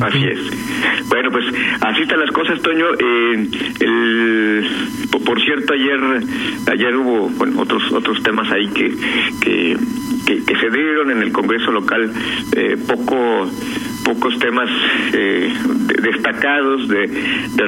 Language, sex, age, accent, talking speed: Spanish, male, 50-69, Mexican, 130 wpm